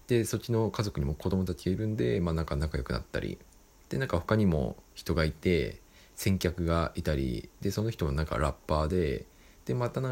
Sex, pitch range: male, 75-105 Hz